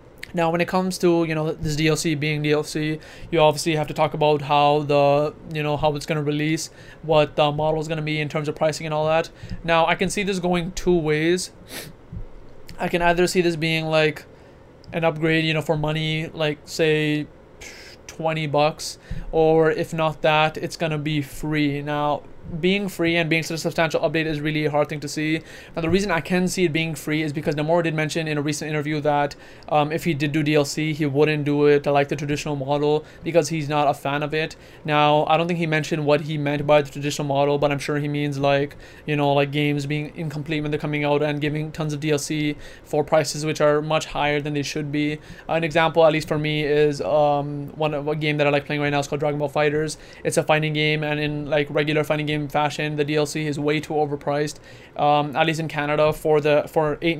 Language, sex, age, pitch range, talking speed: English, male, 20-39, 150-160 Hz, 235 wpm